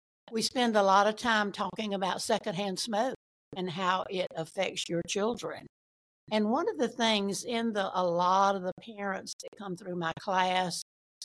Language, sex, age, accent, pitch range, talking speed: English, female, 60-79, American, 170-205 Hz, 175 wpm